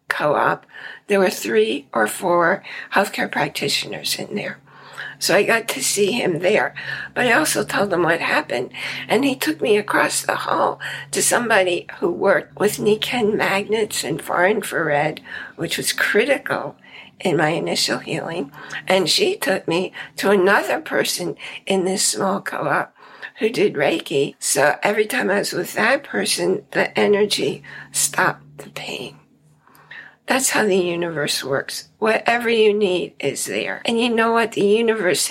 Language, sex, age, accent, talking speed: English, female, 60-79, American, 155 wpm